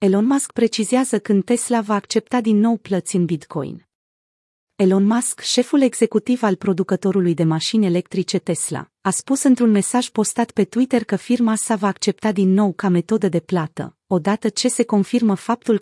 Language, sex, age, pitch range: Romanian, female, 30-49, 185-225 Hz